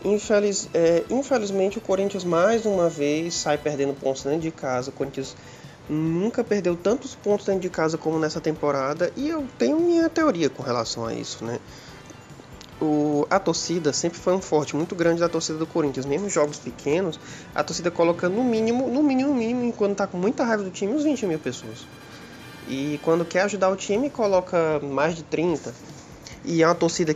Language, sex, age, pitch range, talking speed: Portuguese, male, 20-39, 145-195 Hz, 185 wpm